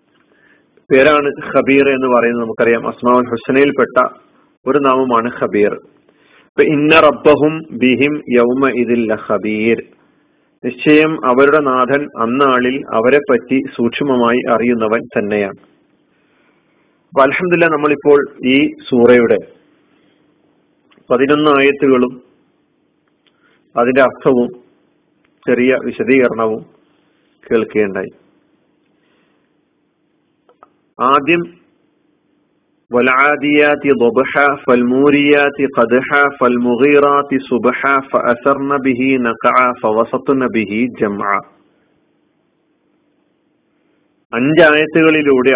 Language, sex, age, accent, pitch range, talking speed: Malayalam, male, 40-59, native, 120-145 Hz, 45 wpm